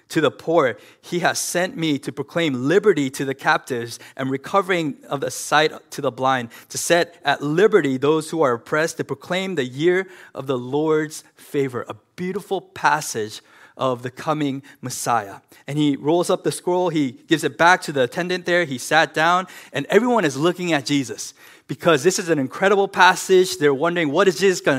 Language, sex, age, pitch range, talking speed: English, male, 20-39, 125-180 Hz, 190 wpm